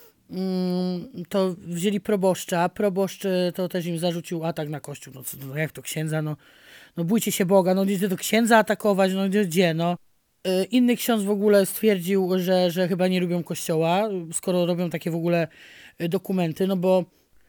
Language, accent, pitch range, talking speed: Polish, native, 175-210 Hz, 170 wpm